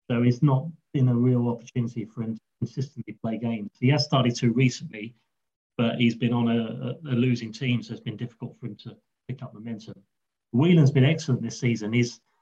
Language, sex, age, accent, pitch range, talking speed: English, male, 30-49, British, 115-135 Hz, 210 wpm